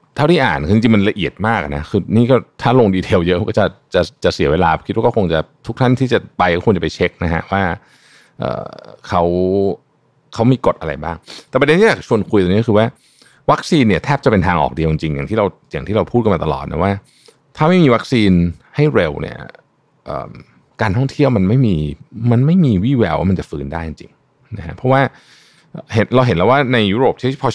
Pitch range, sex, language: 90-130 Hz, male, Thai